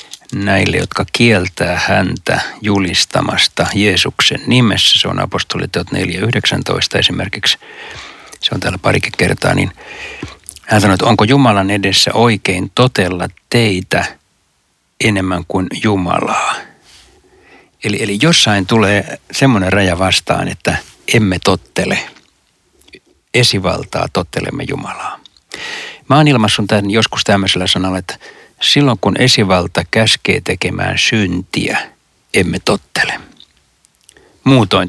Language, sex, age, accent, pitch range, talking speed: Finnish, male, 60-79, native, 95-110 Hz, 100 wpm